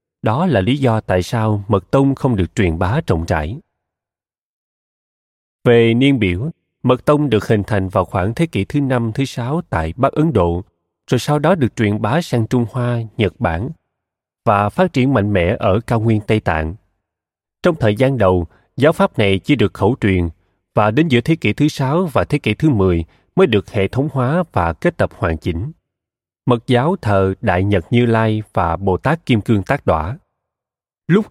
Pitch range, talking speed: 100-135 Hz, 195 wpm